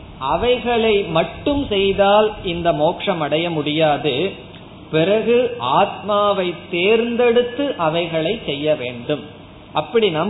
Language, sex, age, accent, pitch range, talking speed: Tamil, male, 20-39, native, 155-205 Hz, 85 wpm